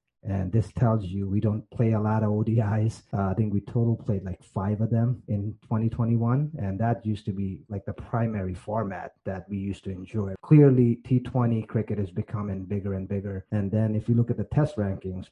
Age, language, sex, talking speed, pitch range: 30-49, English, male, 210 wpm, 100-120 Hz